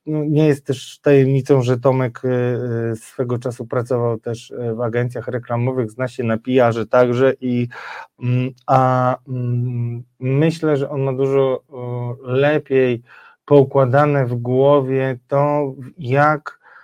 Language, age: Polish, 20-39